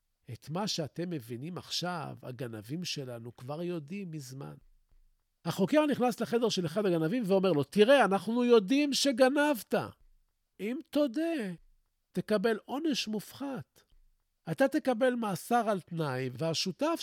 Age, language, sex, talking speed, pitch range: 50-69, Hebrew, male, 115 wpm, 155-235 Hz